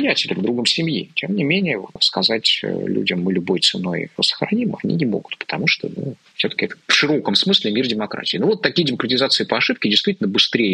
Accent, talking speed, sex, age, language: native, 195 wpm, male, 20-39, Russian